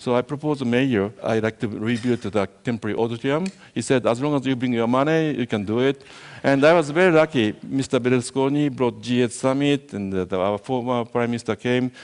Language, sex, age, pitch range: Chinese, male, 60-79, 105-135 Hz